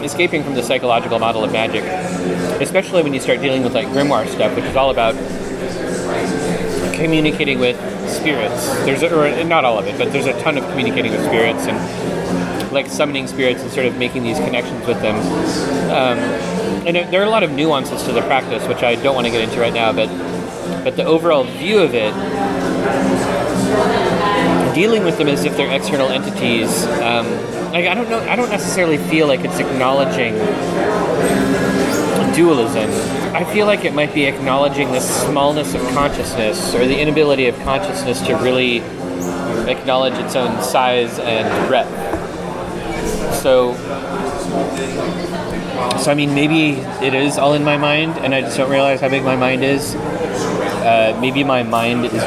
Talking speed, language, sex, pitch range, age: 170 wpm, English, male, 115-150 Hz, 30-49